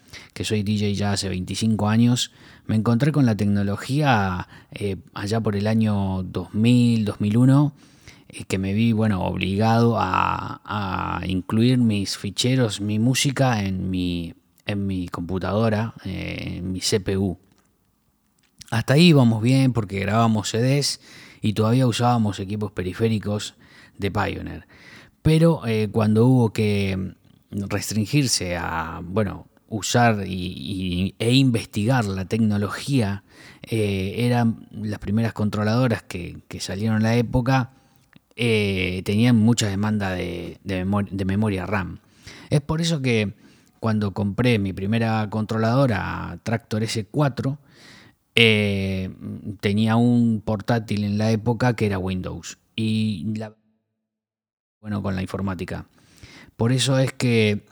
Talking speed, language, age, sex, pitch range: 125 wpm, English, 30-49, male, 95-115 Hz